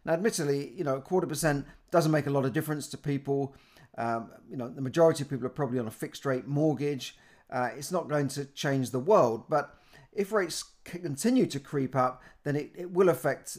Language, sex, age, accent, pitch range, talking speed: English, male, 40-59, British, 130-165 Hz, 215 wpm